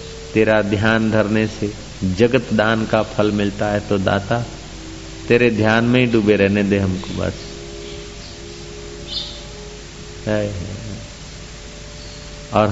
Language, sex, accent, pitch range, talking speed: Hindi, male, native, 105-120 Hz, 105 wpm